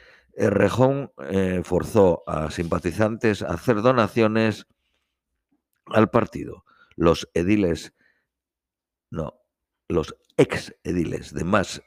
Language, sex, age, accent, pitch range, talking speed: Spanish, male, 50-69, Spanish, 85-110 Hz, 90 wpm